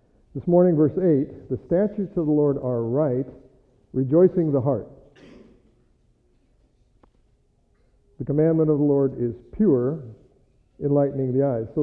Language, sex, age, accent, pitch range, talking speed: English, male, 50-69, American, 125-155 Hz, 125 wpm